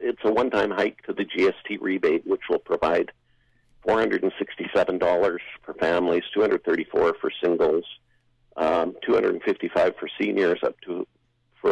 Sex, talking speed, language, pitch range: male, 125 wpm, English, 330-445 Hz